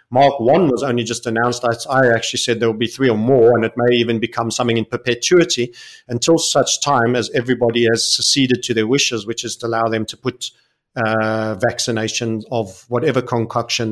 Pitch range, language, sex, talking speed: 110-125 Hz, English, male, 195 wpm